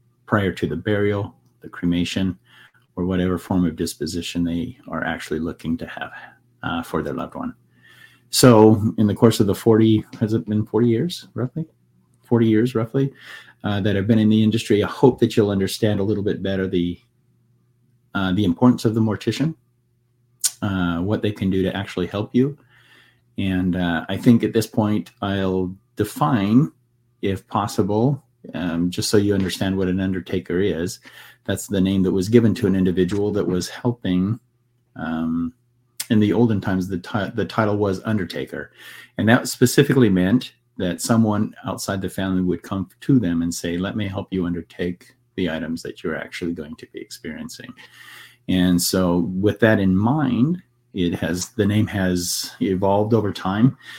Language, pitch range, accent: English, 95-120 Hz, American